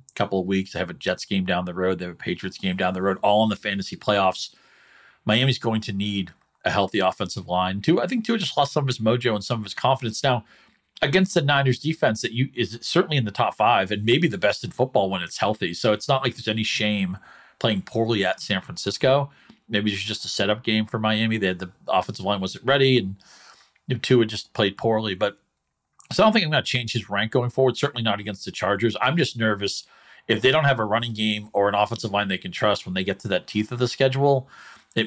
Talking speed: 250 wpm